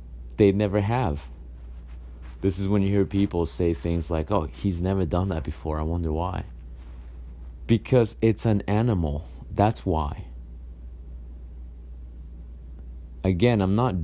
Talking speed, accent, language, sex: 130 wpm, American, English, male